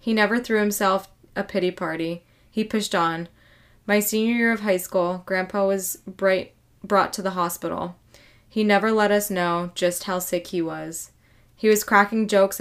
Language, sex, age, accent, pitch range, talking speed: English, female, 20-39, American, 170-200 Hz, 170 wpm